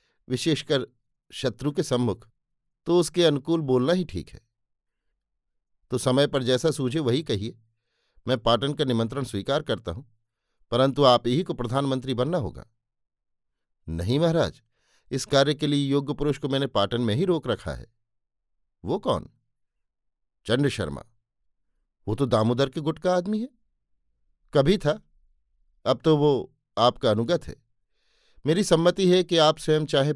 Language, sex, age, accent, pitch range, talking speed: Hindi, male, 50-69, native, 115-150 Hz, 150 wpm